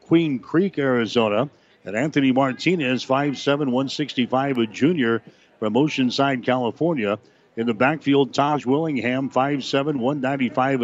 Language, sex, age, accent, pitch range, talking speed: English, male, 60-79, American, 125-150 Hz, 110 wpm